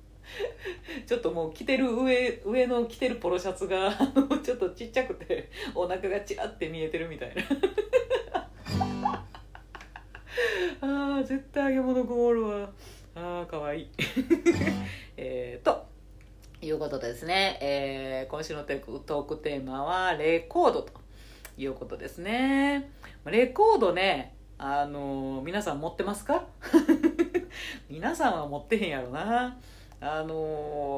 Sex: female